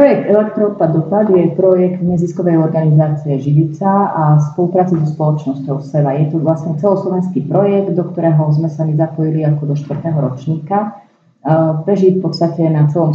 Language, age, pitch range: Slovak, 30-49, 150-175 Hz